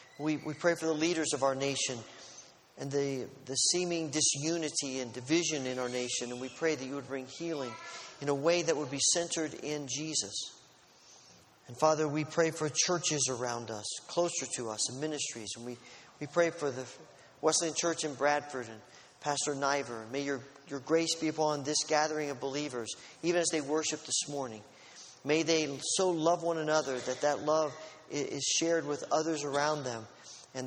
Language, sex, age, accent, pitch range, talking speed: English, male, 40-59, American, 135-160 Hz, 185 wpm